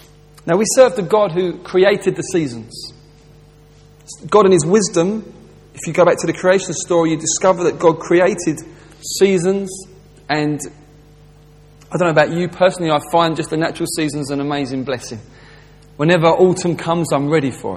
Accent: British